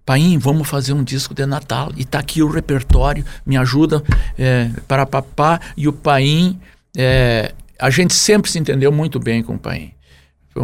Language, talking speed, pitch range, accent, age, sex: Portuguese, 180 wpm, 125-165 Hz, Brazilian, 60-79, male